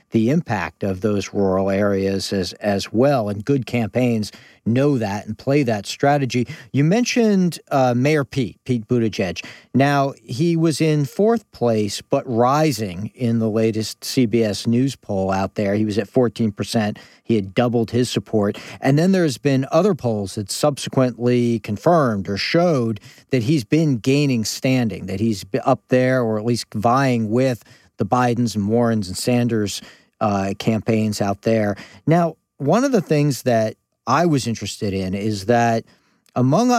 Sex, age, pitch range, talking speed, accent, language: male, 40-59, 105-140 Hz, 160 wpm, American, English